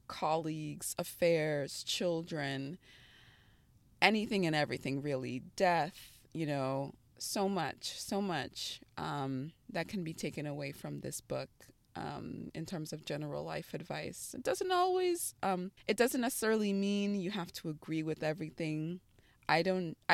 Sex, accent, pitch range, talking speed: female, American, 140-180 Hz, 135 wpm